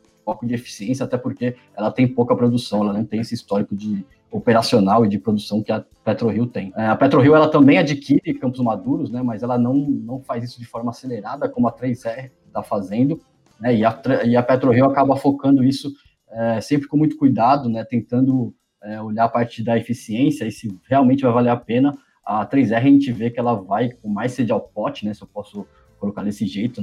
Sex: male